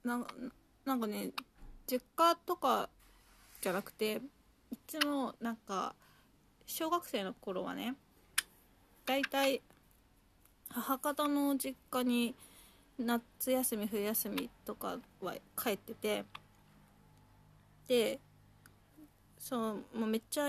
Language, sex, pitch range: Japanese, female, 215-270 Hz